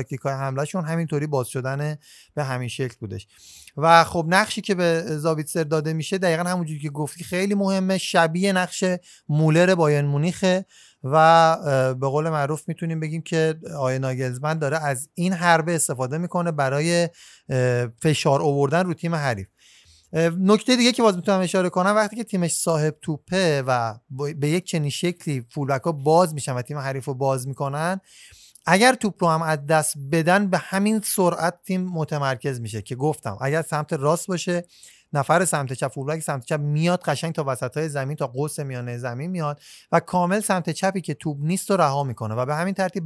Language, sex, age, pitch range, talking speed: Persian, male, 30-49, 140-180 Hz, 170 wpm